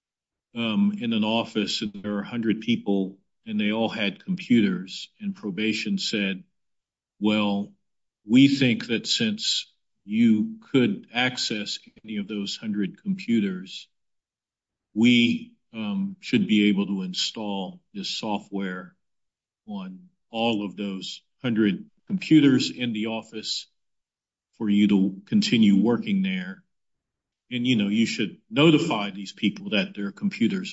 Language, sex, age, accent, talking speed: English, male, 50-69, American, 125 wpm